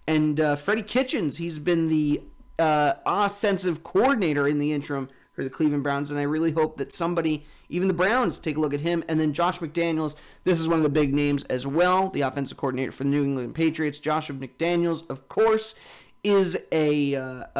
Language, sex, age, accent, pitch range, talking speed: English, male, 30-49, American, 140-180 Hz, 200 wpm